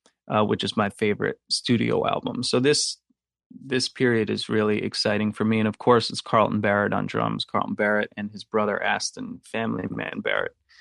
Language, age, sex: English, 30-49, male